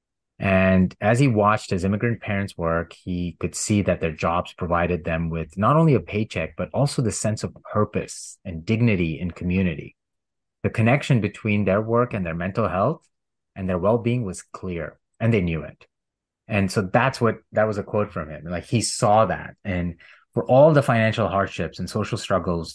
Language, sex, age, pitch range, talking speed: English, male, 30-49, 90-110 Hz, 190 wpm